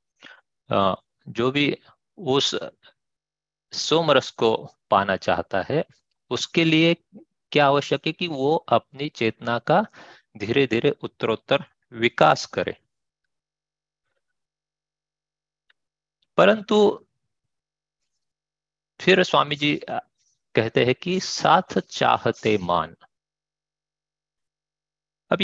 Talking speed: 80 wpm